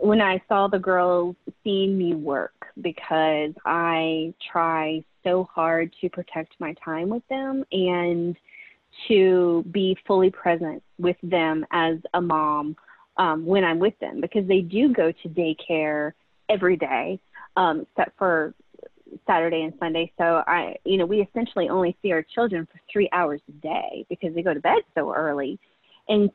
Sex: female